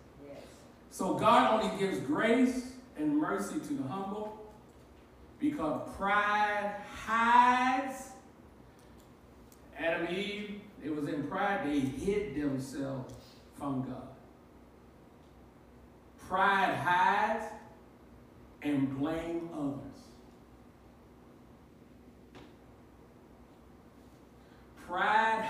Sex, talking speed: male, 75 wpm